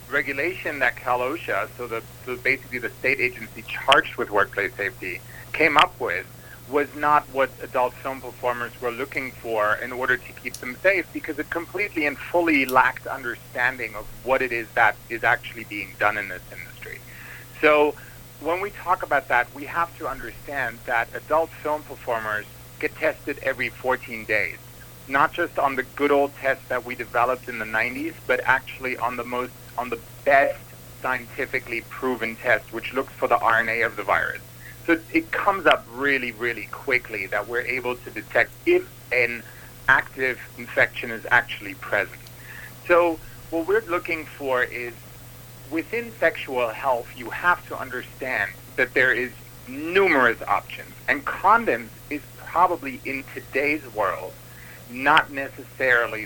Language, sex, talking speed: English, male, 160 wpm